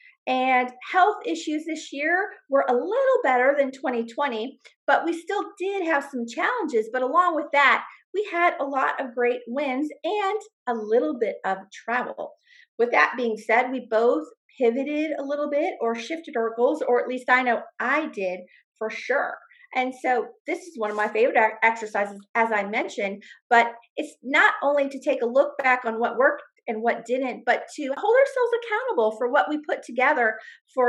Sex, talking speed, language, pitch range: female, 185 wpm, English, 230-305 Hz